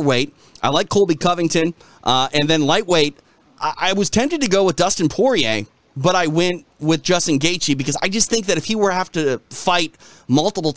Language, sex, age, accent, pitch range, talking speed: English, male, 30-49, American, 115-150 Hz, 205 wpm